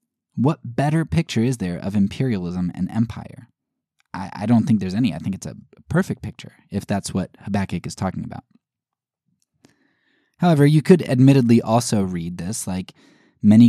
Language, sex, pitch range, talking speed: English, male, 100-145 Hz, 160 wpm